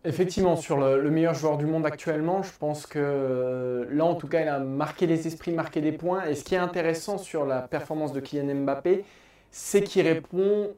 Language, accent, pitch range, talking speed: French, French, 150-205 Hz, 215 wpm